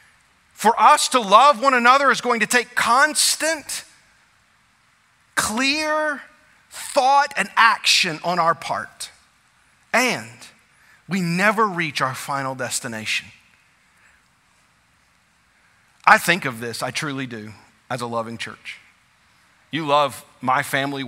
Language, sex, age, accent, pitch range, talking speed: English, male, 40-59, American, 130-180 Hz, 115 wpm